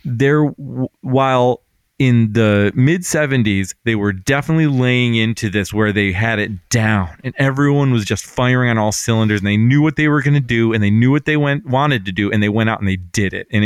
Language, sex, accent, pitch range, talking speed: English, male, American, 110-150 Hz, 230 wpm